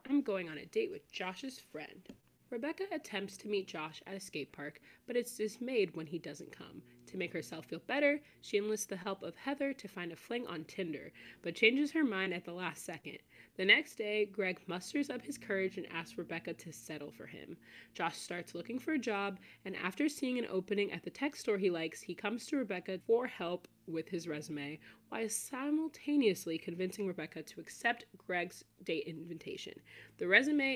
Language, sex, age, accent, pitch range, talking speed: English, female, 20-39, American, 175-245 Hz, 195 wpm